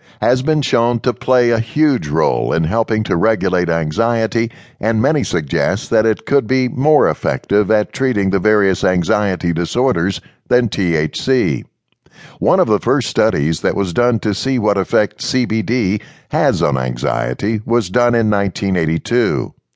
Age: 60-79